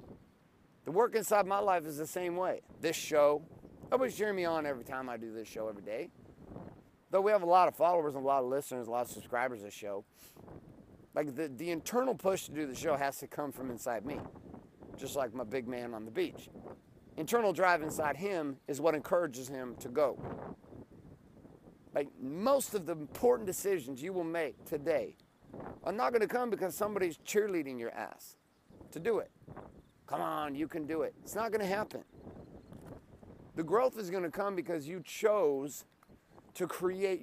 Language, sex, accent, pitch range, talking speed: English, male, American, 140-195 Hz, 190 wpm